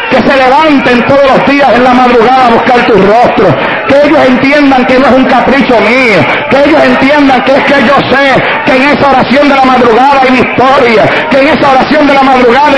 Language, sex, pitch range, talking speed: English, male, 250-290 Hz, 215 wpm